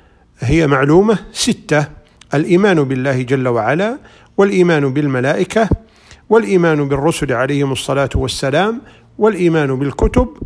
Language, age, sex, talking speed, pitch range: Arabic, 50-69, male, 90 wpm, 140-210 Hz